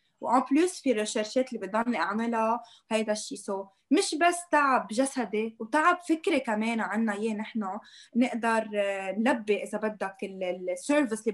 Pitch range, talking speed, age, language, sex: 215-265 Hz, 130 wpm, 20-39, Arabic, female